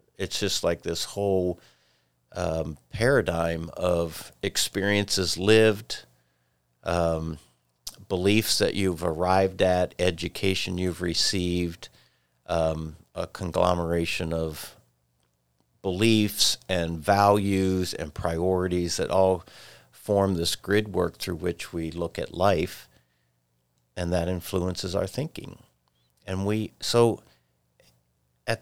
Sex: male